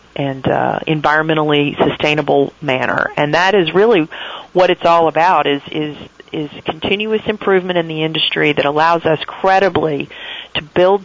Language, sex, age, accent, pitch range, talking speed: English, female, 40-59, American, 145-180 Hz, 145 wpm